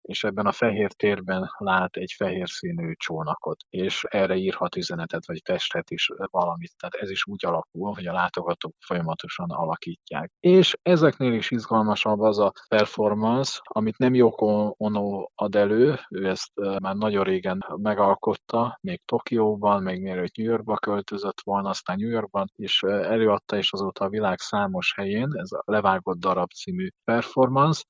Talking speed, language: 165 wpm, Hungarian